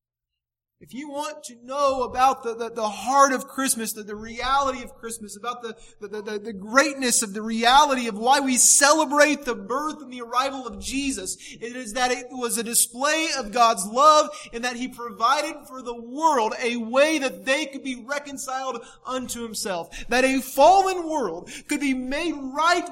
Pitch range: 170-270 Hz